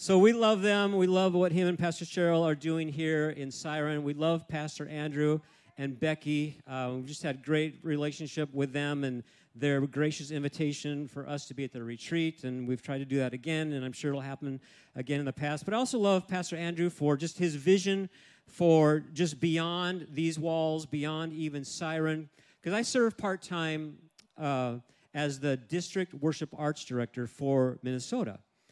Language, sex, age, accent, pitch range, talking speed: English, male, 50-69, American, 145-170 Hz, 185 wpm